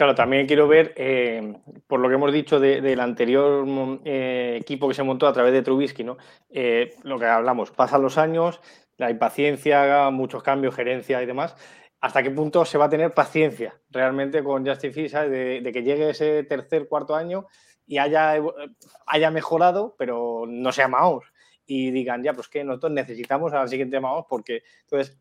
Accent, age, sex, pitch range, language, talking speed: Spanish, 20-39, male, 135-160 Hz, Spanish, 185 wpm